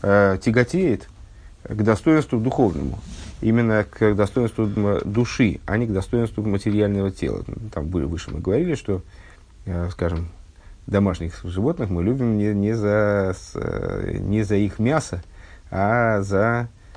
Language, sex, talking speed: Russian, male, 120 wpm